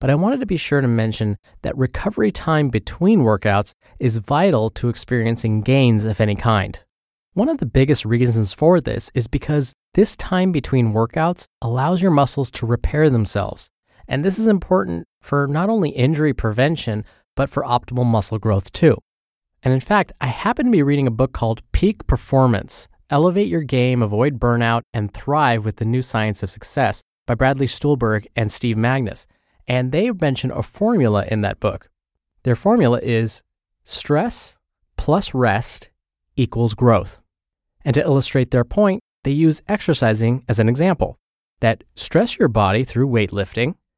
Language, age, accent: English, 20-39, American